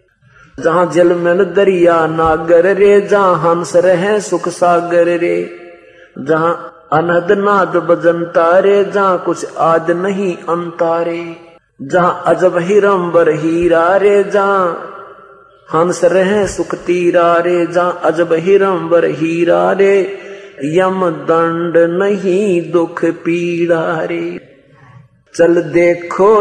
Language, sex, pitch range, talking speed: Hindi, male, 170-195 Hz, 100 wpm